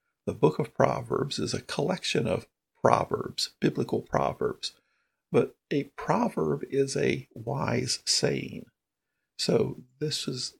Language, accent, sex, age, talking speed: English, American, male, 50-69, 120 wpm